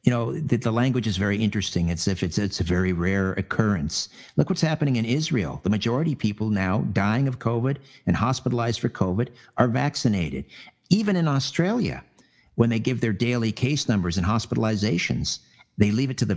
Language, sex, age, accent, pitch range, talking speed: English, male, 50-69, American, 95-125 Hz, 190 wpm